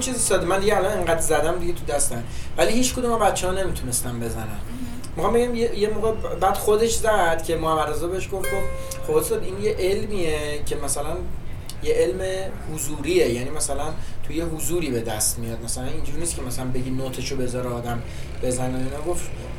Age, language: 30-49, Persian